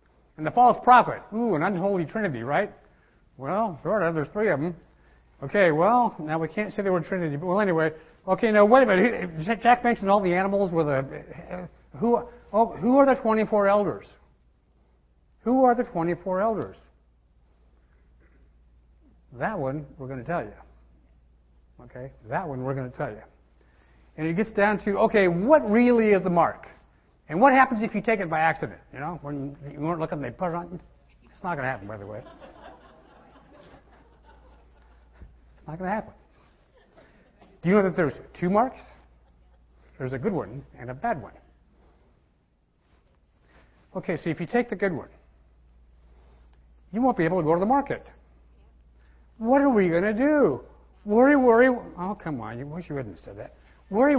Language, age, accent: English, 60-79, American